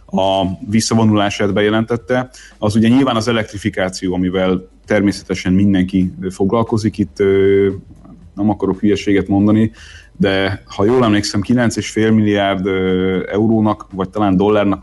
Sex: male